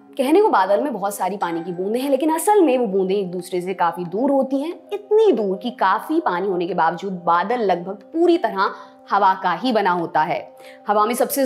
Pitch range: 205-300 Hz